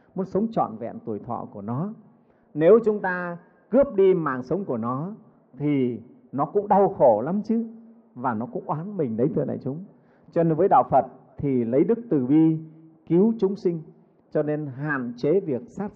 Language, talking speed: Vietnamese, 195 wpm